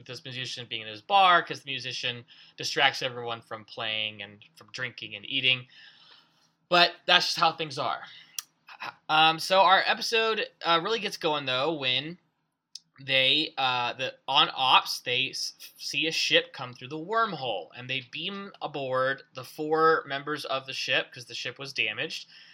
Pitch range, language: 125-160 Hz, English